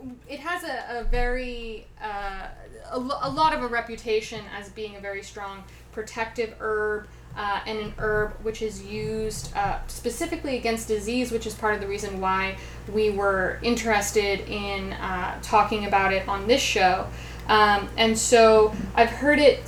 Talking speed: 170 wpm